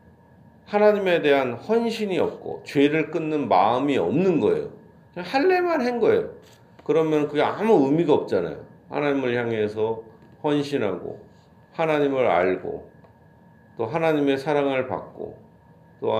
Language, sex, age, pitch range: Korean, male, 40-59, 115-165 Hz